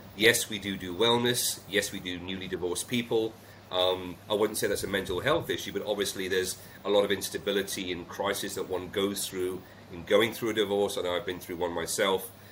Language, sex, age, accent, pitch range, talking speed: English, male, 40-59, British, 90-110 Hz, 215 wpm